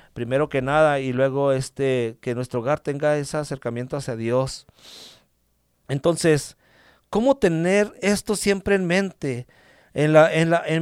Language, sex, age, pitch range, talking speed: English, male, 50-69, 140-180 Hz, 145 wpm